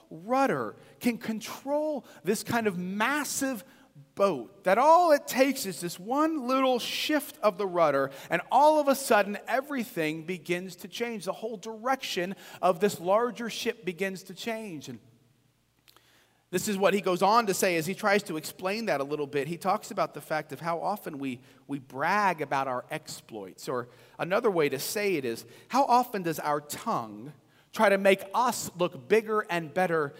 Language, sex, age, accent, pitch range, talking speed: English, male, 40-59, American, 175-240 Hz, 180 wpm